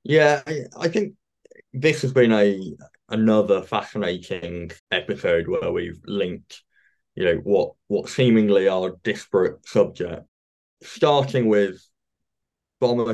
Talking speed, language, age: 110 wpm, English, 20-39